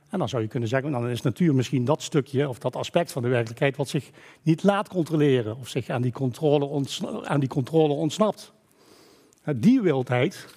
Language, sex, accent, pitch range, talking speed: Dutch, male, Dutch, 130-175 Hz, 200 wpm